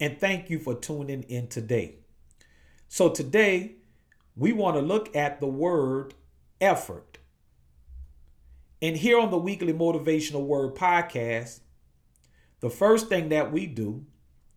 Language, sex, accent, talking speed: English, male, American, 130 wpm